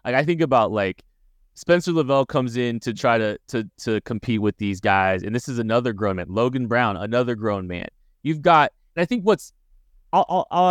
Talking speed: 195 wpm